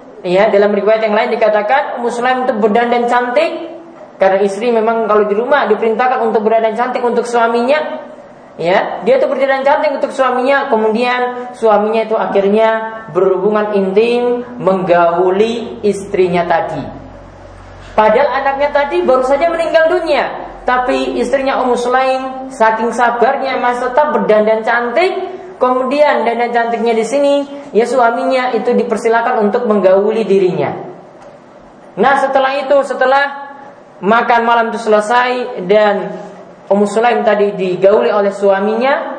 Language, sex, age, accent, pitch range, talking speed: Indonesian, female, 20-39, native, 205-265 Hz, 125 wpm